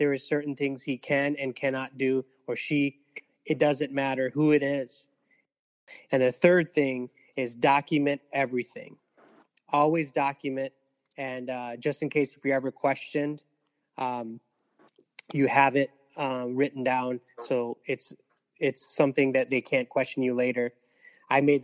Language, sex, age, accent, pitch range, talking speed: English, male, 20-39, American, 125-140 Hz, 150 wpm